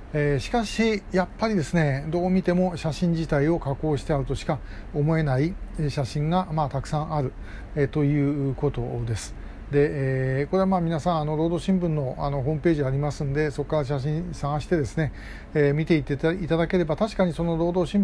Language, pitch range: Japanese, 135-170 Hz